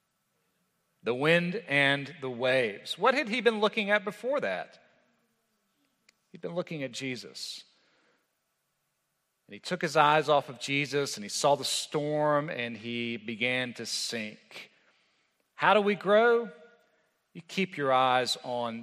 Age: 40-59